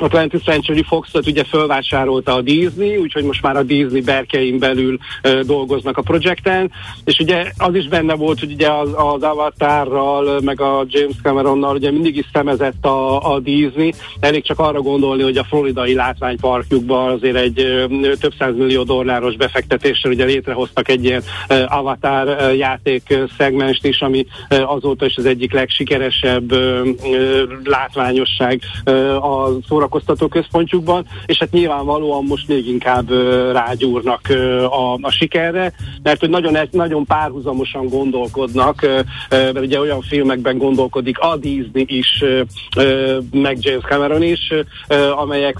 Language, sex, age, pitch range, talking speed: Hungarian, male, 50-69, 130-145 Hz, 140 wpm